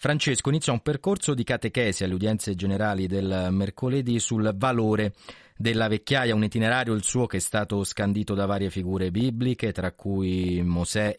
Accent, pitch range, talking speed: native, 95-125 Hz, 165 wpm